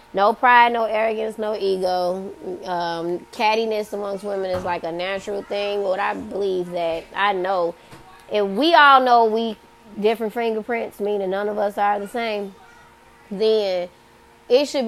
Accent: American